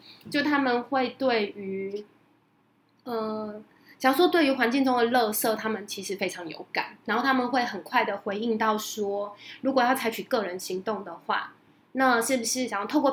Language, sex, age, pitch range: Chinese, female, 20-39, 205-260 Hz